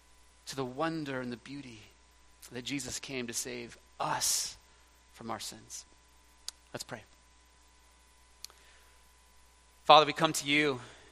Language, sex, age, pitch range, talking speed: English, male, 30-49, 115-140 Hz, 120 wpm